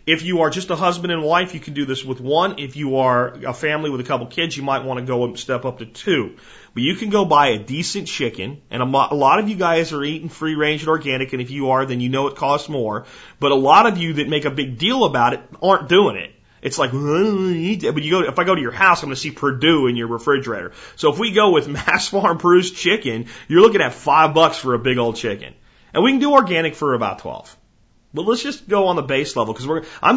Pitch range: 125-165 Hz